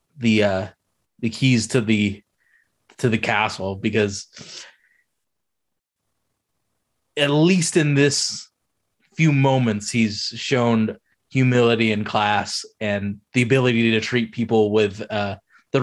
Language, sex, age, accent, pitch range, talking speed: English, male, 20-39, American, 110-145 Hz, 115 wpm